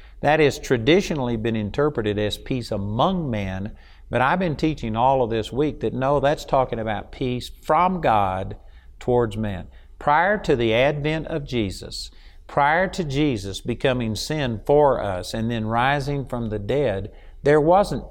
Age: 50-69